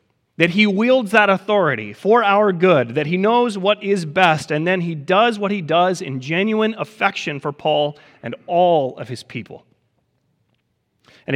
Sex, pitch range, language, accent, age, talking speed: male, 145-205 Hz, English, American, 30-49, 170 wpm